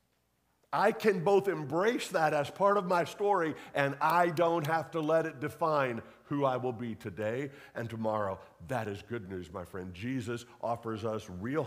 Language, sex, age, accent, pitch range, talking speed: English, male, 50-69, American, 100-160 Hz, 180 wpm